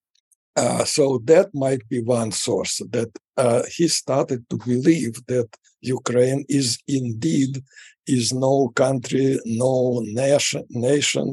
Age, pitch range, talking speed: 60-79, 120-140 Hz, 120 wpm